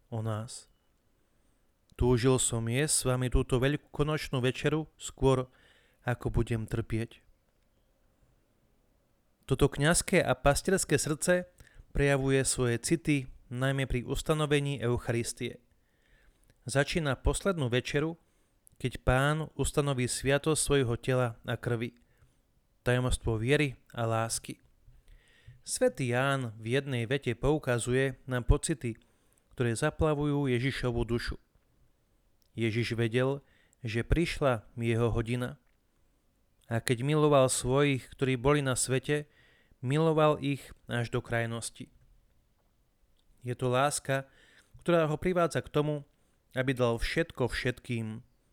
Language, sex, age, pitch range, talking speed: Slovak, male, 30-49, 120-140 Hz, 105 wpm